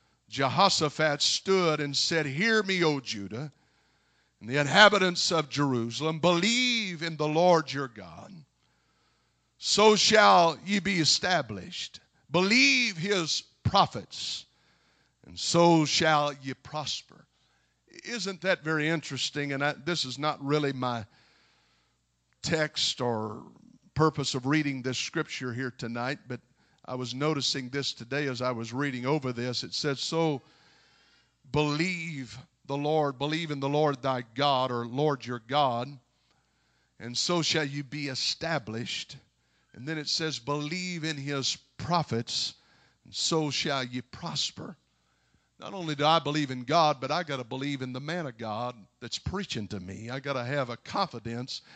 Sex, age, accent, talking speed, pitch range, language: male, 50-69, American, 145 wpm, 125-160 Hz, English